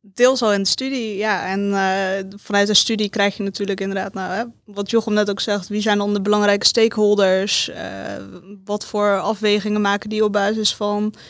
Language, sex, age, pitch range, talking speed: Dutch, female, 20-39, 195-210 Hz, 190 wpm